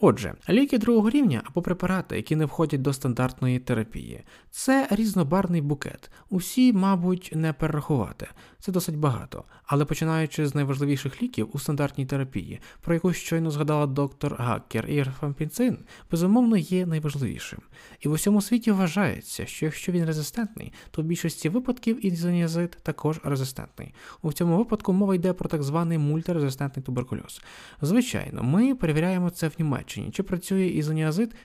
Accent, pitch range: native, 140-185 Hz